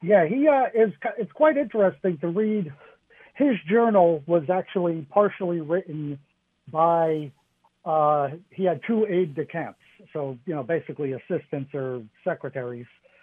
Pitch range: 150-185 Hz